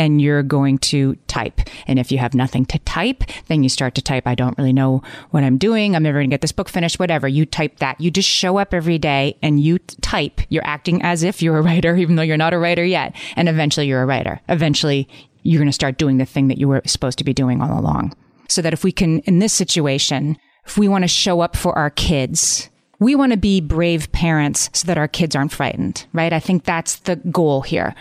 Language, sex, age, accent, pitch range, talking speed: English, female, 30-49, American, 140-175 Hz, 250 wpm